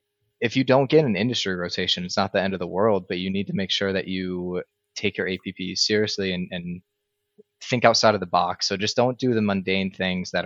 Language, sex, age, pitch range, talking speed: English, male, 20-39, 90-105 Hz, 235 wpm